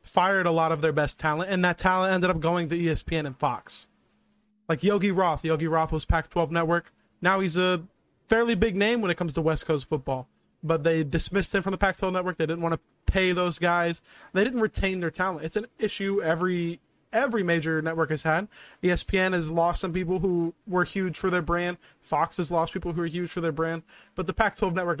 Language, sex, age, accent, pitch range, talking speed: English, male, 20-39, American, 160-190 Hz, 220 wpm